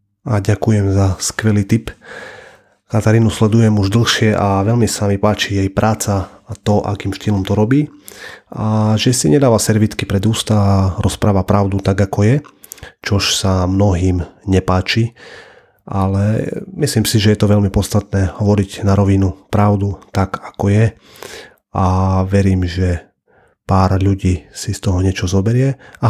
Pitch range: 95-105 Hz